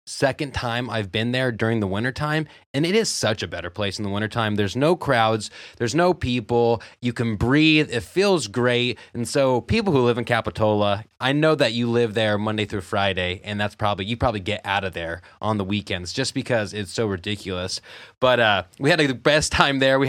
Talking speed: 215 wpm